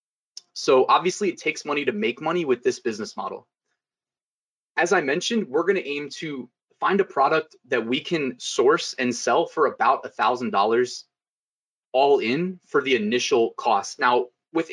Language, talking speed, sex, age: English, 165 wpm, male, 20-39